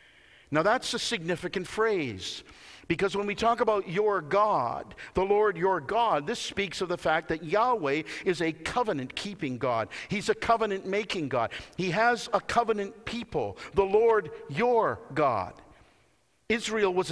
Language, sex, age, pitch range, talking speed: English, male, 50-69, 180-225 Hz, 145 wpm